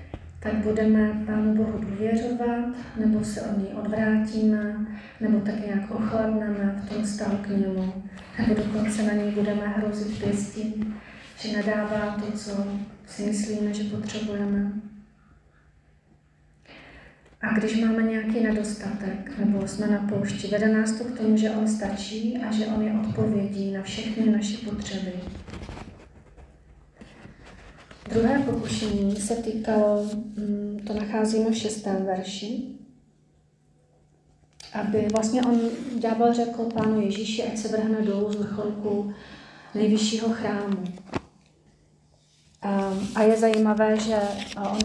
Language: Czech